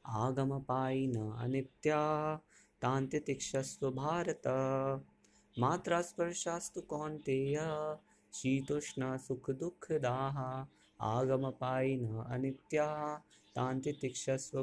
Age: 20-39